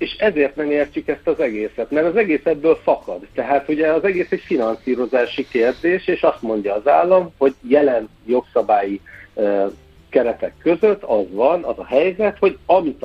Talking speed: 160 wpm